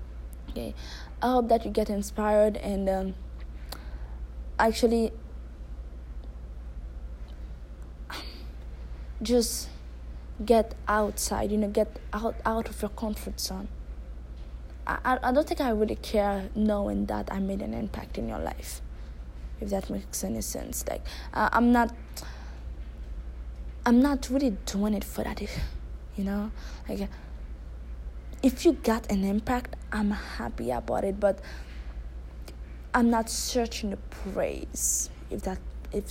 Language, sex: English, female